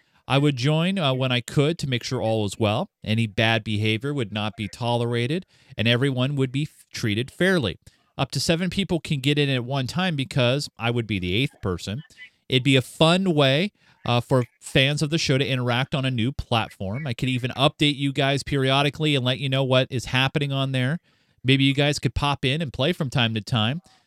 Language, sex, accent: English, male, American